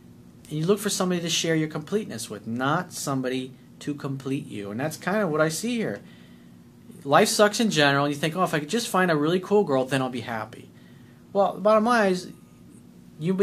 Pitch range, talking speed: 130-185 Hz, 225 wpm